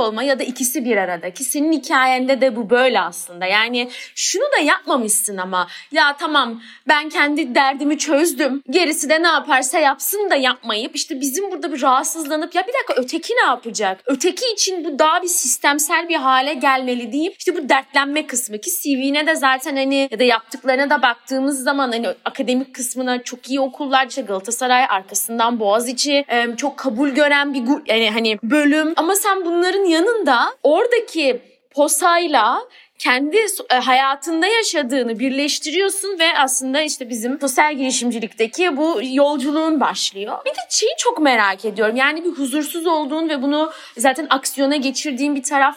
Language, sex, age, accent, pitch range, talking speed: Turkish, female, 30-49, native, 250-310 Hz, 155 wpm